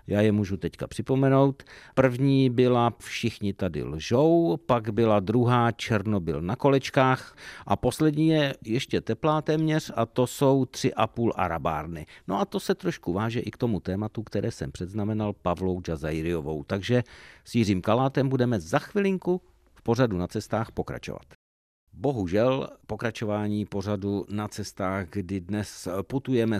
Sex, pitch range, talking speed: male, 100-125 Hz, 145 wpm